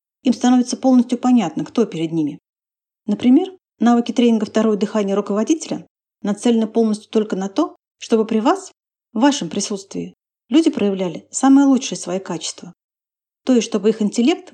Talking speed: 145 wpm